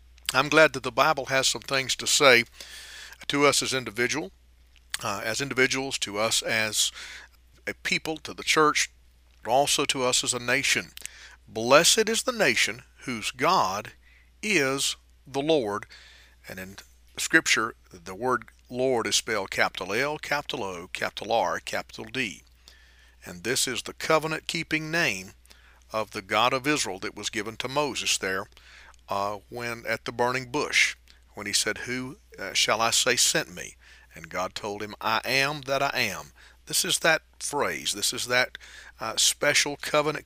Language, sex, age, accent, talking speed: English, male, 50-69, American, 160 wpm